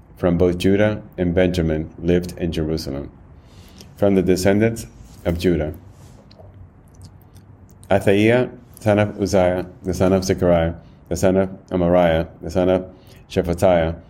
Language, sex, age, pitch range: English, male, 30-49, 85-95 Hz